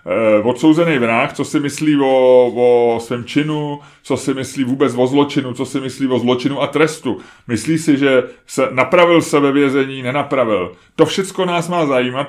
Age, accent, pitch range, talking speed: 30-49, native, 120-150 Hz, 180 wpm